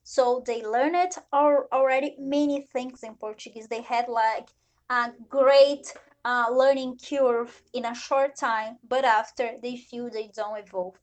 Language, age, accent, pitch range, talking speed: Portuguese, 20-39, Brazilian, 230-280 Hz, 160 wpm